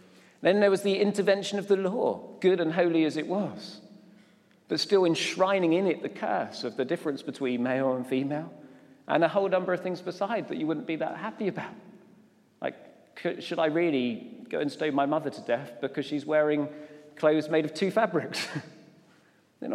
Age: 40-59